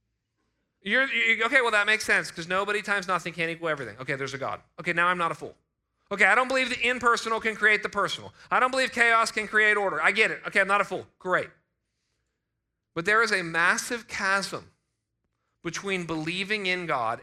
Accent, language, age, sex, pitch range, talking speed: American, English, 40-59, male, 145-235 Hz, 200 wpm